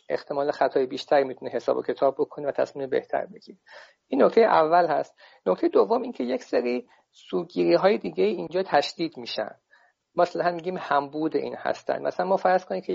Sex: male